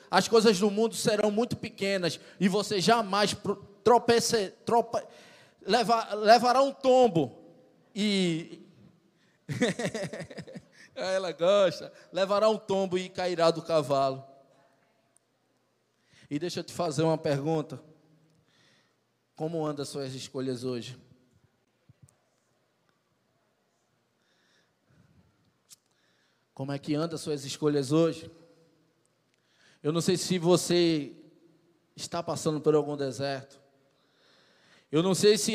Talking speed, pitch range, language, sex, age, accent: 100 wpm, 145-185 Hz, Portuguese, male, 20-39, Brazilian